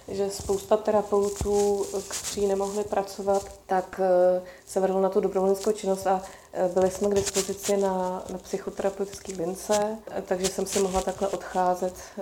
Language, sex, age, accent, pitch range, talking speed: Czech, female, 30-49, native, 190-215 Hz, 140 wpm